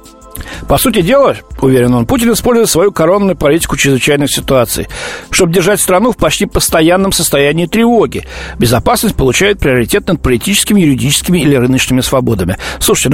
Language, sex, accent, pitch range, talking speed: Russian, male, native, 130-190 Hz, 135 wpm